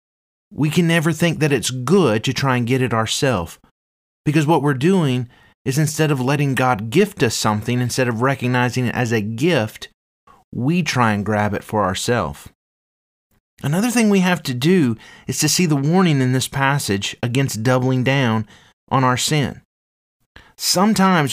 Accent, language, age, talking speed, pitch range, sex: American, English, 30-49, 170 wpm, 110-155 Hz, male